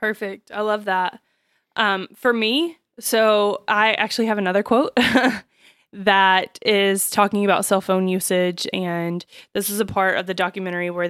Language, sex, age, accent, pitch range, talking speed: English, female, 20-39, American, 180-215 Hz, 155 wpm